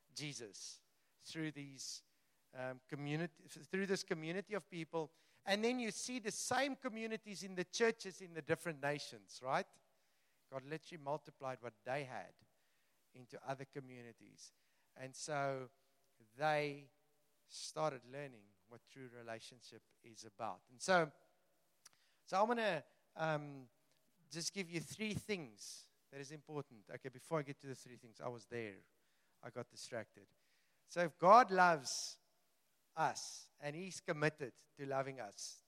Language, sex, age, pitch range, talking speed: English, male, 50-69, 135-180 Hz, 140 wpm